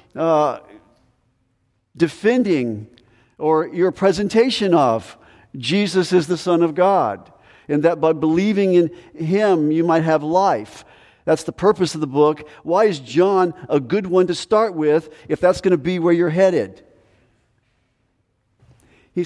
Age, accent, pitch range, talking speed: 50-69, American, 155-195 Hz, 145 wpm